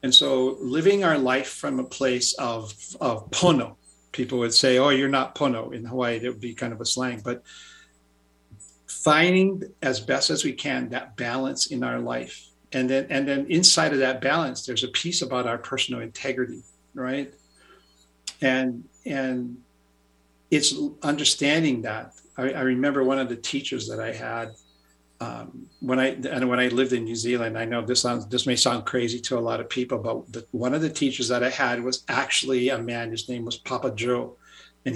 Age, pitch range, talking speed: 50-69, 115-130 Hz, 190 wpm